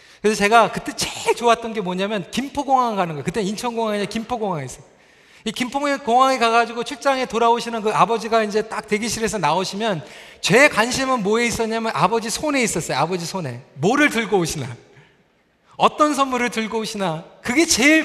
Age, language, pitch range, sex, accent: 40-59, Korean, 170-235 Hz, male, native